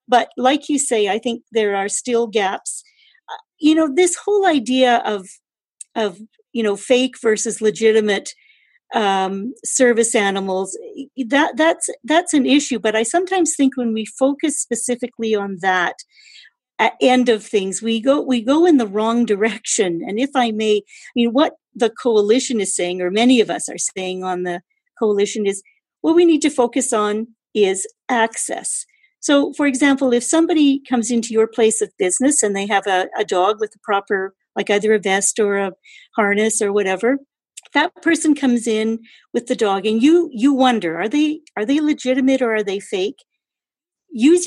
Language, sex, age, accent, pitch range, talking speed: English, female, 50-69, American, 215-295 Hz, 180 wpm